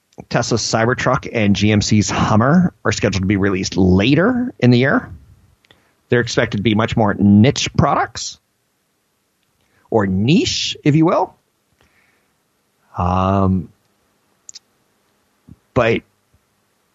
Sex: male